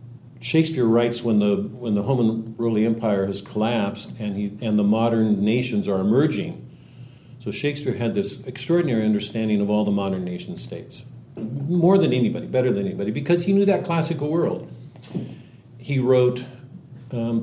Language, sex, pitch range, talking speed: English, male, 110-135 Hz, 160 wpm